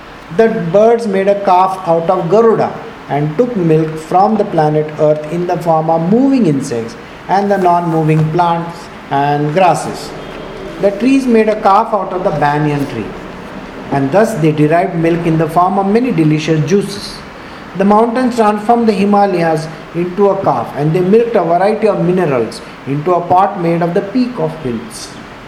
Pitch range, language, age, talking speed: 150-200 Hz, English, 50-69, 170 wpm